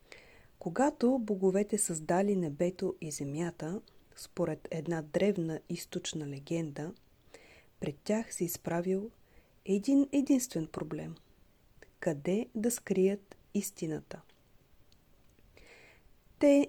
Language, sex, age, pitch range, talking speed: Bulgarian, female, 40-59, 165-210 Hz, 85 wpm